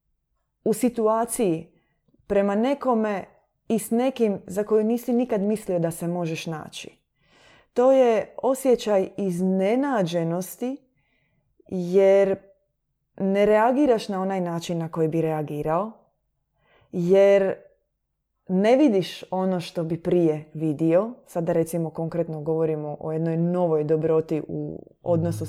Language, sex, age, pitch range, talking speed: Croatian, female, 20-39, 170-235 Hz, 115 wpm